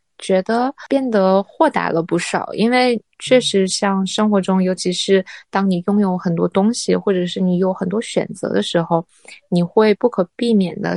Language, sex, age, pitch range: Chinese, female, 20-39, 175-205 Hz